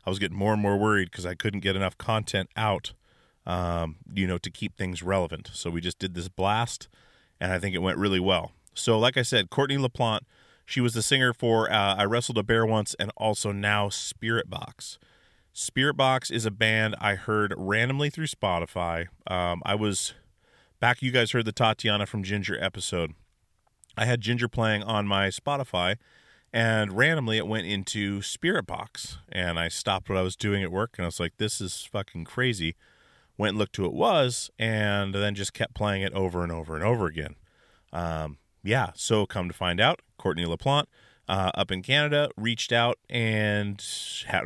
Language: English